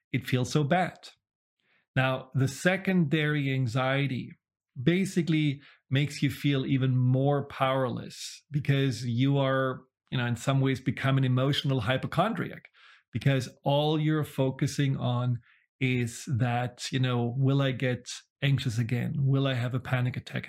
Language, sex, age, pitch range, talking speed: English, male, 40-59, 130-150 Hz, 140 wpm